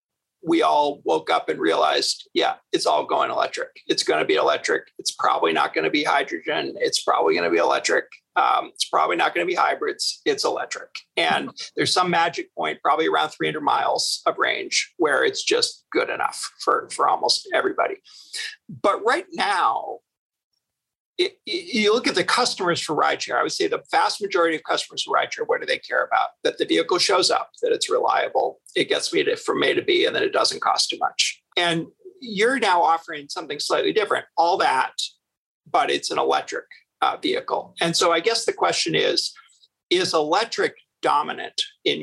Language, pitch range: English, 345-450 Hz